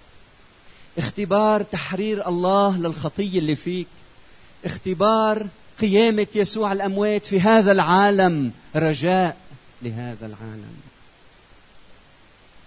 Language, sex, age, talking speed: Arabic, male, 30-49, 80 wpm